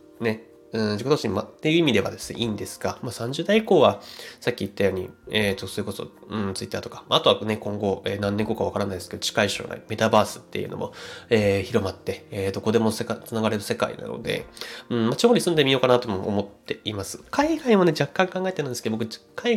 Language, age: Japanese, 20-39